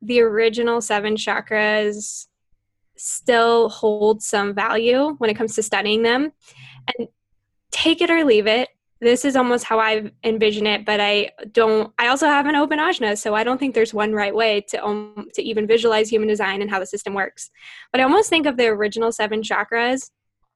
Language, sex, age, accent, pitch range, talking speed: English, female, 10-29, American, 210-240 Hz, 190 wpm